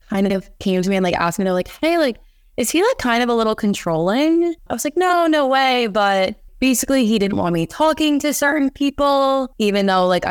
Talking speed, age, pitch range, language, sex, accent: 235 wpm, 20-39, 180-255 Hz, English, female, American